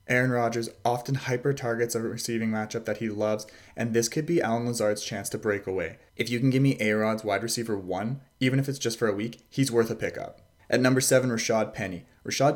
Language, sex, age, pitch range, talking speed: English, male, 20-39, 110-130 Hz, 225 wpm